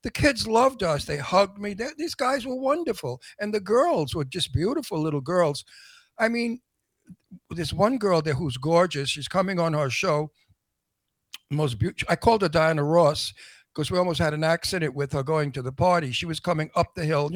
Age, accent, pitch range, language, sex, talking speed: 60-79, American, 145-190 Hz, English, male, 205 wpm